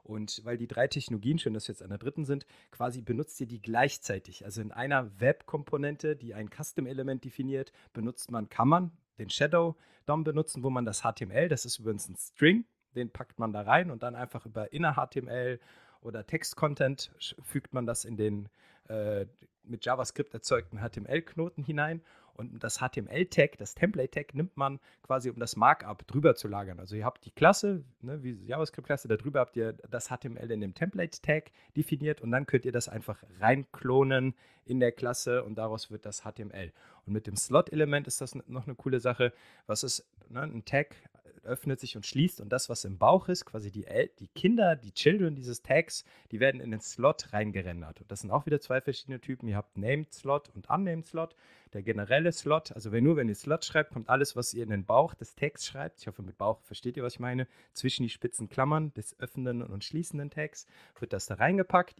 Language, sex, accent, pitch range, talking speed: German, male, German, 110-145 Hz, 200 wpm